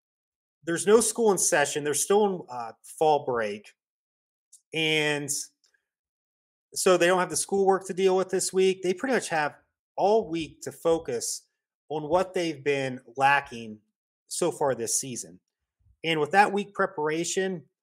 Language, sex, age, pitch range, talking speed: English, male, 30-49, 140-185 Hz, 150 wpm